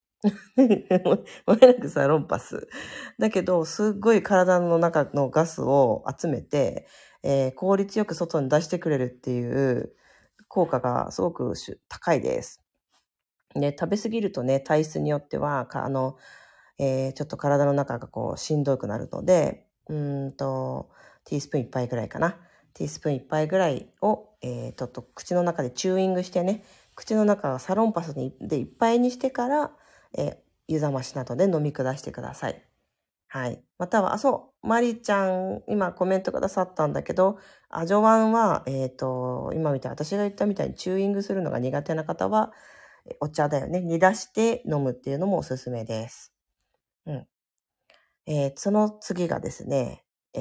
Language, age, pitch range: Japanese, 40-59, 135-195 Hz